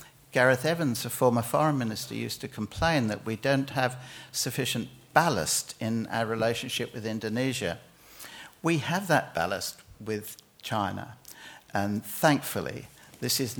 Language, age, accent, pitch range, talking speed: English, 60-79, British, 110-135 Hz, 130 wpm